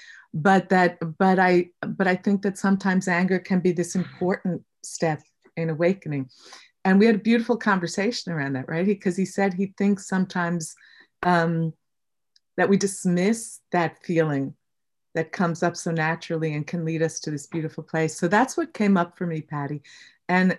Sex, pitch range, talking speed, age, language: female, 160-190 Hz, 180 wpm, 50-69, English